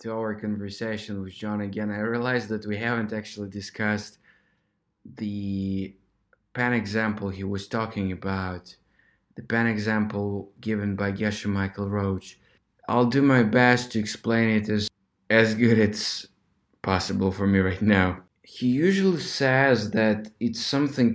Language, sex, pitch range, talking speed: English, male, 100-120 Hz, 140 wpm